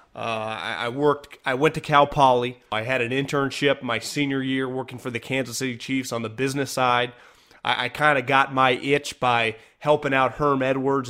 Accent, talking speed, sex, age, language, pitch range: American, 200 wpm, male, 30-49, English, 115-135 Hz